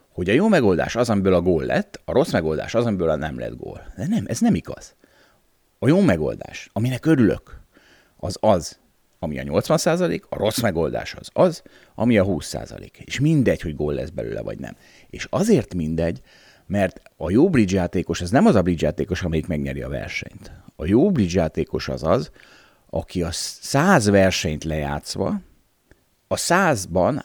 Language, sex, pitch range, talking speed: Hungarian, male, 85-130 Hz, 170 wpm